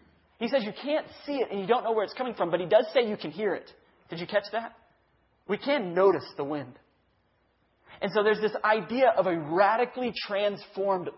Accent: American